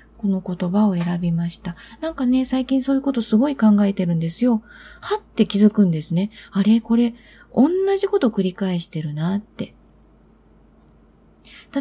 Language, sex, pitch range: Japanese, female, 185-255 Hz